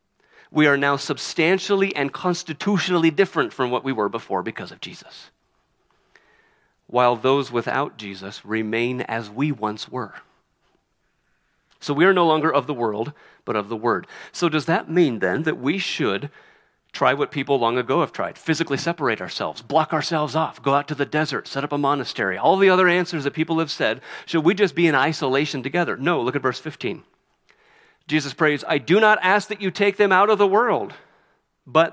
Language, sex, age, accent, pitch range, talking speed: English, male, 40-59, American, 135-185 Hz, 190 wpm